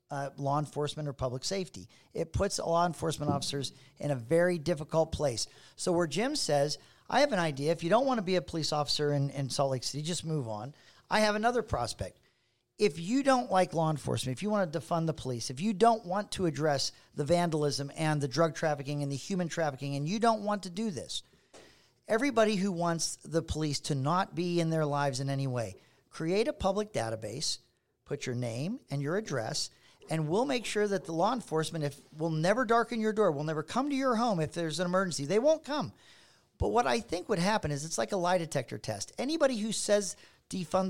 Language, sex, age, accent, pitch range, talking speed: English, male, 50-69, American, 140-205 Hz, 220 wpm